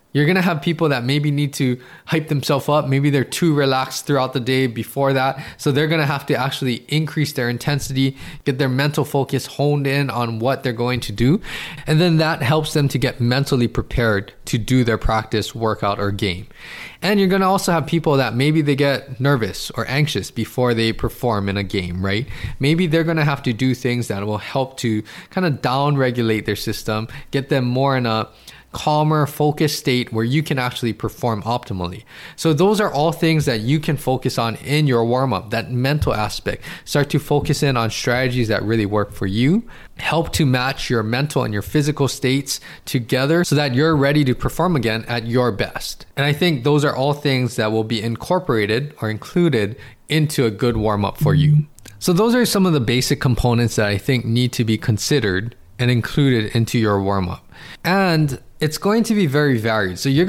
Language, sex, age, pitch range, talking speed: English, male, 20-39, 115-150 Hz, 210 wpm